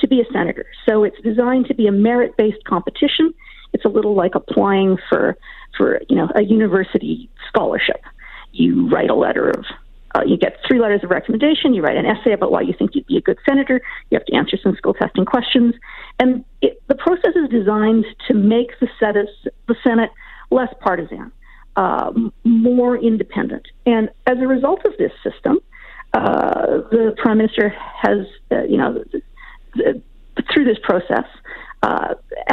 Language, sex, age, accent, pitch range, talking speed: English, female, 50-69, American, 220-270 Hz, 170 wpm